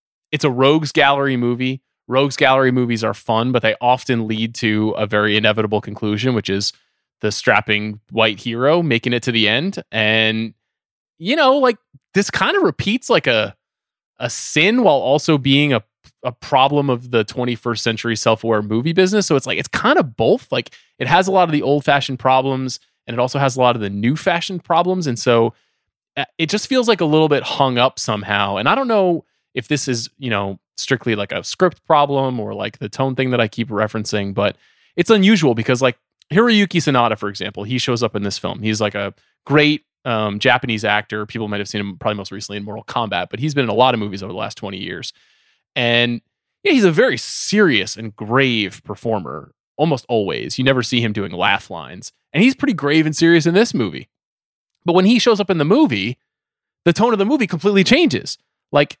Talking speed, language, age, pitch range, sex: 205 wpm, English, 20-39, 110-155 Hz, male